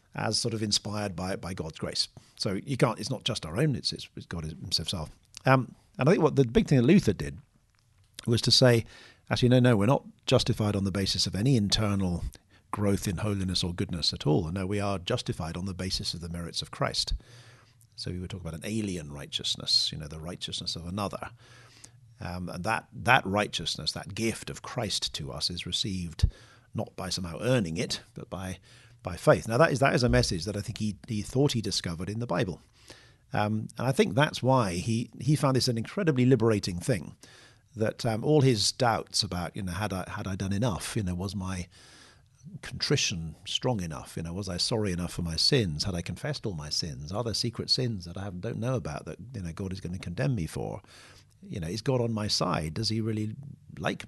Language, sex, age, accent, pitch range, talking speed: English, male, 50-69, British, 95-120 Hz, 220 wpm